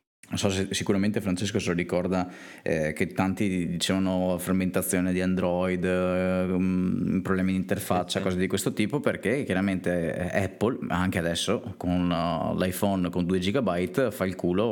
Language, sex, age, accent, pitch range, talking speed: Italian, male, 20-39, native, 85-100 Hz, 145 wpm